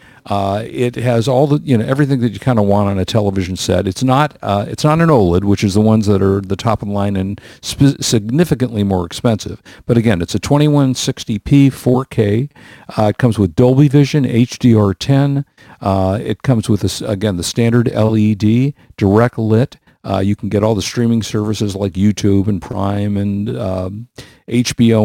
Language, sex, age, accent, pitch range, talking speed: English, male, 50-69, American, 100-125 Hz, 190 wpm